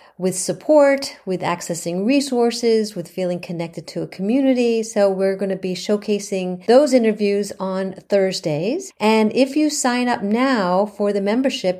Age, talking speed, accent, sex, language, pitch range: 50-69, 155 wpm, American, female, English, 190-225 Hz